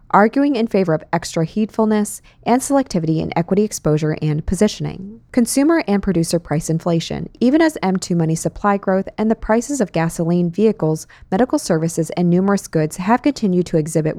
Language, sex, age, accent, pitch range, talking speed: English, female, 20-39, American, 165-215 Hz, 165 wpm